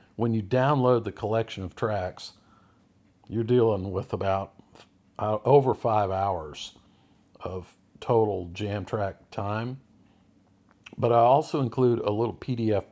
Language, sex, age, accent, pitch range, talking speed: English, male, 50-69, American, 95-120 Hz, 125 wpm